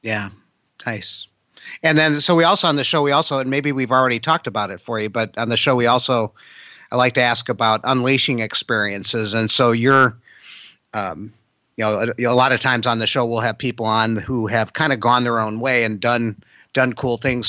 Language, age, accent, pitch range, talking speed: English, 50-69, American, 110-135 Hz, 225 wpm